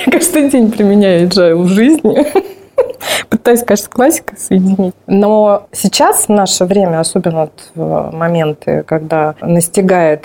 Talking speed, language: 110 wpm, Russian